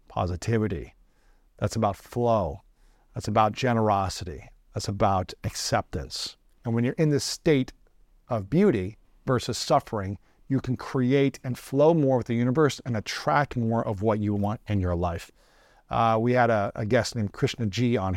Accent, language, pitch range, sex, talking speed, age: American, English, 105-125 Hz, male, 160 wpm, 50-69